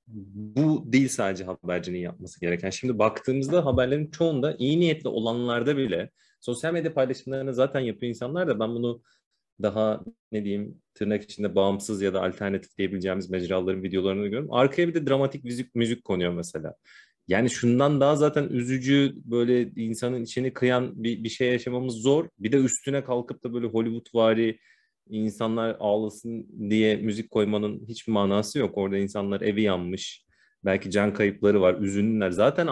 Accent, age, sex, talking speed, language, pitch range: native, 30-49, male, 150 wpm, Turkish, 105-130 Hz